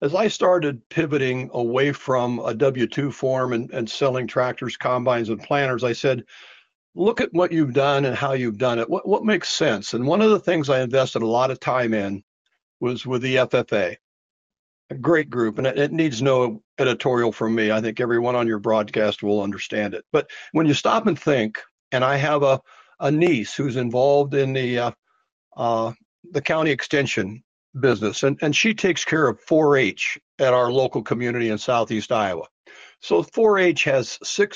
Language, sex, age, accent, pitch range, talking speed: English, male, 60-79, American, 120-150 Hz, 190 wpm